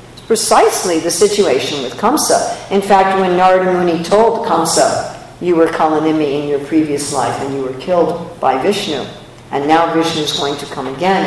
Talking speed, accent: 175 wpm, American